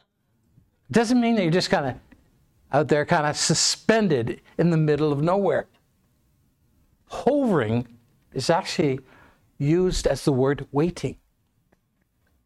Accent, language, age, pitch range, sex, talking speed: American, English, 60-79, 125-195 Hz, male, 125 wpm